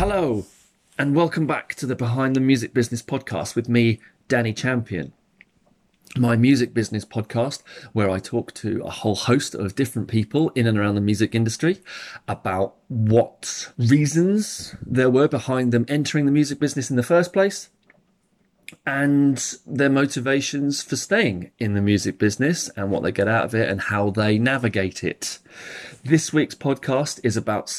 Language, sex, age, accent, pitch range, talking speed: English, male, 30-49, British, 110-140 Hz, 165 wpm